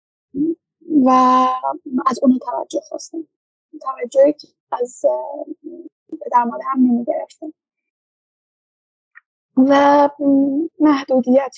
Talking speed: 65 wpm